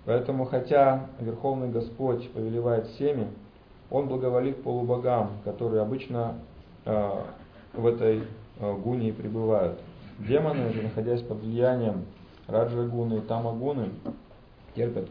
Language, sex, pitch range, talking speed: English, male, 110-130 Hz, 105 wpm